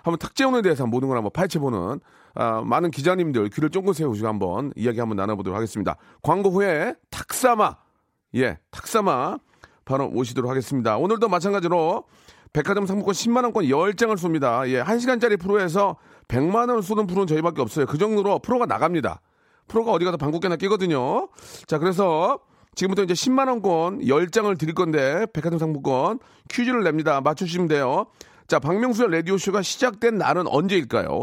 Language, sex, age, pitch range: Korean, male, 40-59, 145-205 Hz